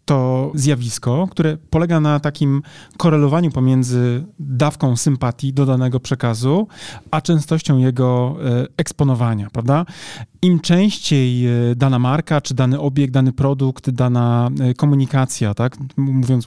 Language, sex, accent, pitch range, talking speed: Polish, male, native, 120-150 Hz, 115 wpm